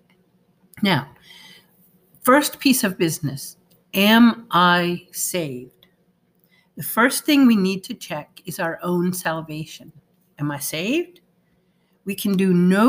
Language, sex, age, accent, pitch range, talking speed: English, female, 50-69, American, 170-205 Hz, 120 wpm